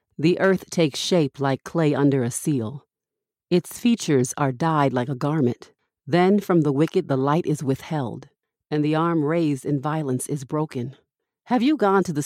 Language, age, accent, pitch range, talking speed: English, 40-59, American, 140-175 Hz, 180 wpm